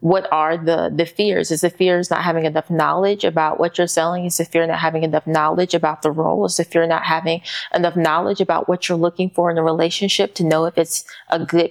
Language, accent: English, American